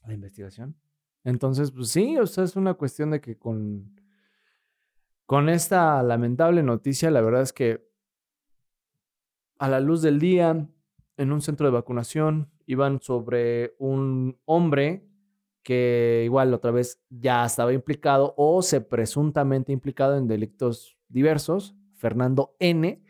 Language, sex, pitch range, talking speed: Spanish, male, 115-150 Hz, 125 wpm